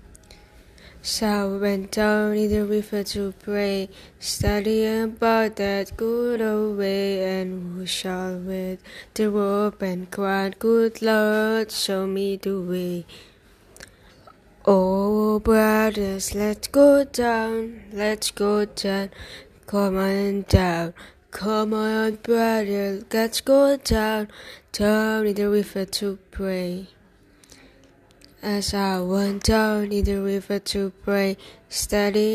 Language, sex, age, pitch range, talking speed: Indonesian, female, 10-29, 195-215 Hz, 115 wpm